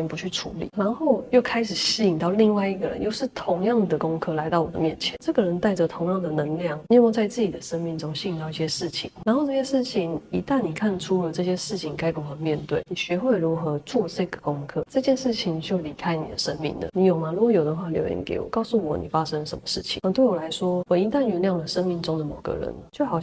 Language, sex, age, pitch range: Chinese, female, 20-39, 165-210 Hz